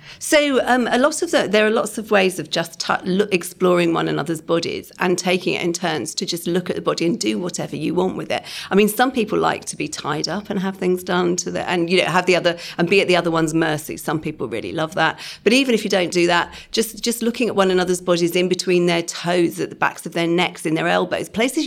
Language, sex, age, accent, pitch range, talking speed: English, female, 40-59, British, 175-215 Hz, 270 wpm